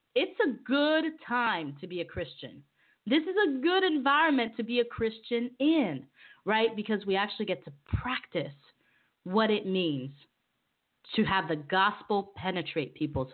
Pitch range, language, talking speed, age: 155-220 Hz, English, 155 wpm, 30-49